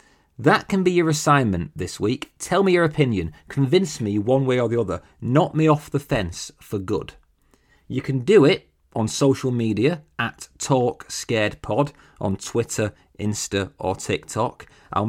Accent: British